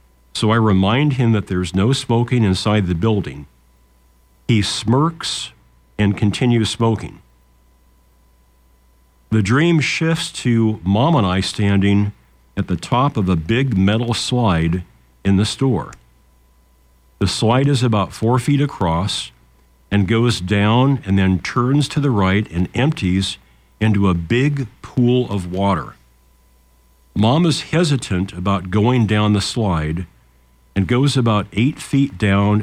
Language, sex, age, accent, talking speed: English, male, 50-69, American, 135 wpm